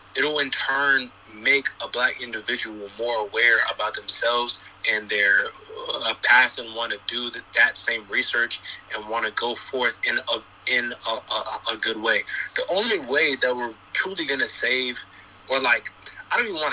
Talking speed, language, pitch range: 185 wpm, English, 105-130 Hz